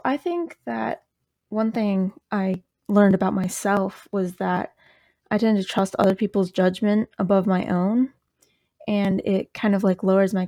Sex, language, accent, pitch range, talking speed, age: female, English, American, 180-200 Hz, 160 wpm, 20-39